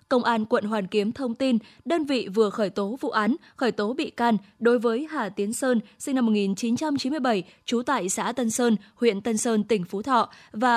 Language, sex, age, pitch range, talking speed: Vietnamese, female, 20-39, 215-255 Hz, 210 wpm